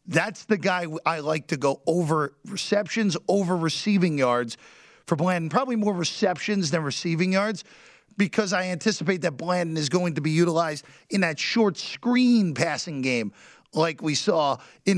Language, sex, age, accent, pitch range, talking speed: English, male, 40-59, American, 155-200 Hz, 160 wpm